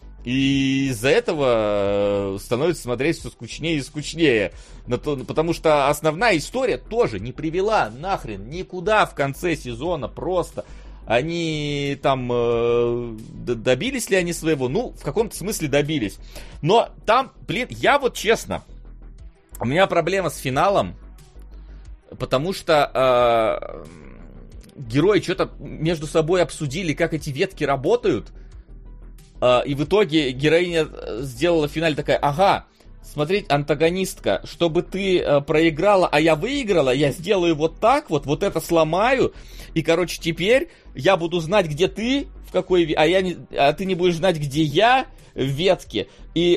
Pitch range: 140-180 Hz